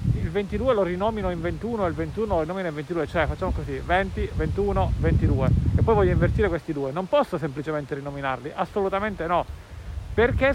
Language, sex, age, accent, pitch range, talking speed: Italian, male, 40-59, native, 125-200 Hz, 175 wpm